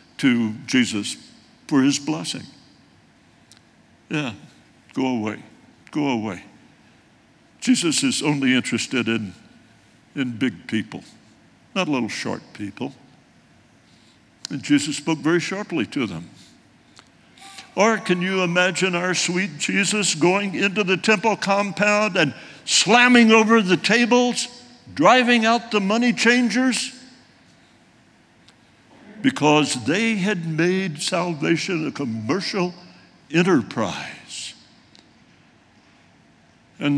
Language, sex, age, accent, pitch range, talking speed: English, male, 60-79, American, 140-210 Hz, 95 wpm